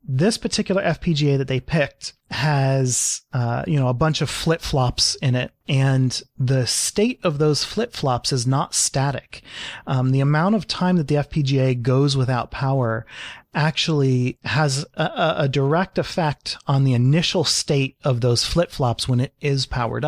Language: English